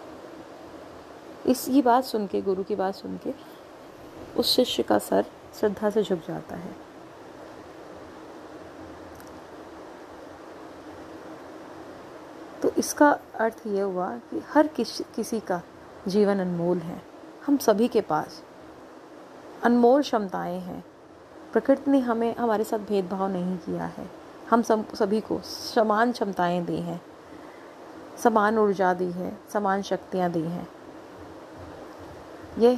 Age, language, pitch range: 30-49, Hindi, 185-245 Hz